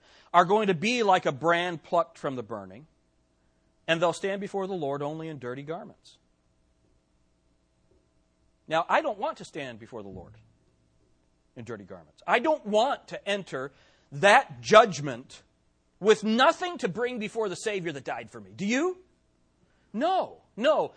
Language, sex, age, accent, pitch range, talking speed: English, male, 40-59, American, 130-215 Hz, 155 wpm